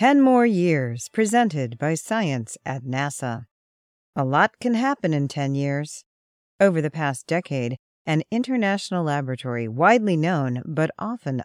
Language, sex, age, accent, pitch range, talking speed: English, female, 40-59, American, 130-180 Hz, 135 wpm